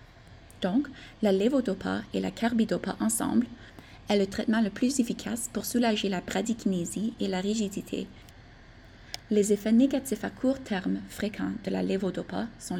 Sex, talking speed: female, 145 wpm